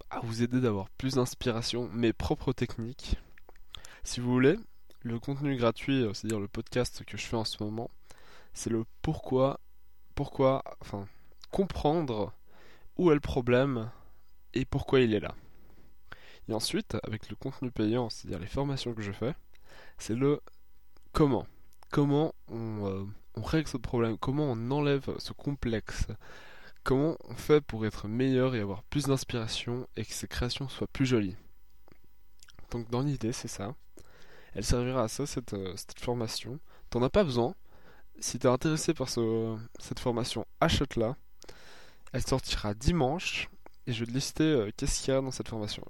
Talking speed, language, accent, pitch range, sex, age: 160 wpm, French, French, 110-135 Hz, male, 20-39